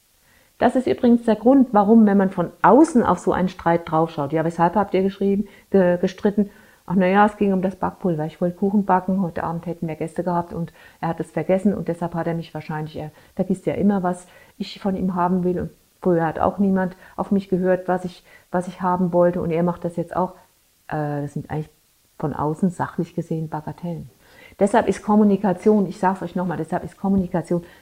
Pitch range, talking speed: 170-215 Hz, 210 wpm